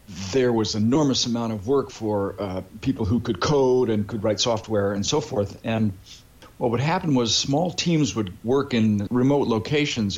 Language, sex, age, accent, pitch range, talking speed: English, male, 60-79, American, 105-125 Hz, 190 wpm